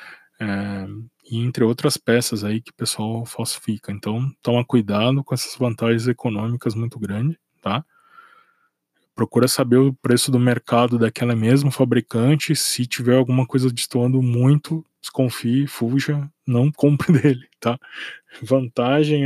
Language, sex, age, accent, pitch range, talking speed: Portuguese, male, 20-39, Brazilian, 110-130 Hz, 130 wpm